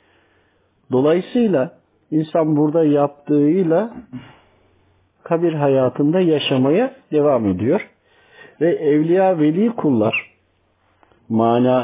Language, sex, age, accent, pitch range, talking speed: Turkish, male, 50-69, native, 110-155 Hz, 70 wpm